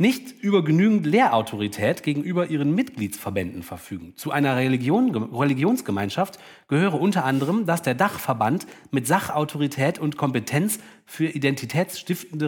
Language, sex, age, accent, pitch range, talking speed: German, male, 30-49, German, 125-180 Hz, 110 wpm